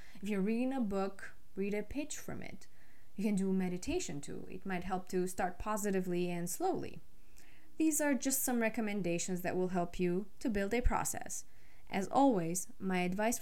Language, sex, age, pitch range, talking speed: English, female, 20-39, 185-245 Hz, 180 wpm